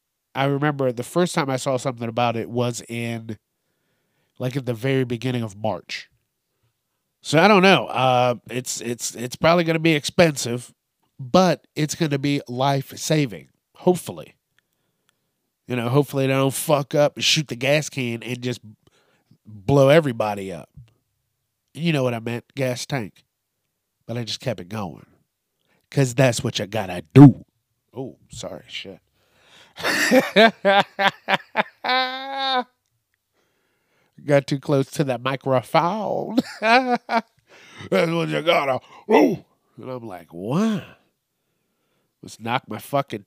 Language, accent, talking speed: English, American, 135 wpm